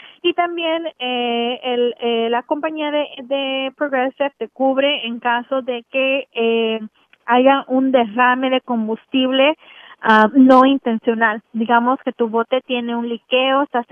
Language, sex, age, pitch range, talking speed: English, female, 20-39, 230-265 Hz, 140 wpm